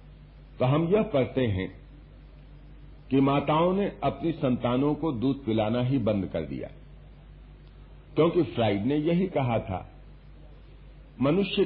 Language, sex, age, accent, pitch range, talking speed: Hindi, male, 50-69, native, 120-165 Hz, 125 wpm